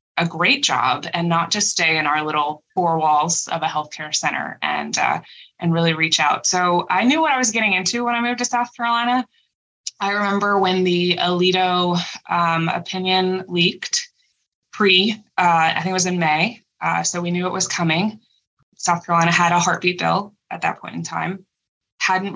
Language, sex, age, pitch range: English, female, 20-39, 165-200 Hz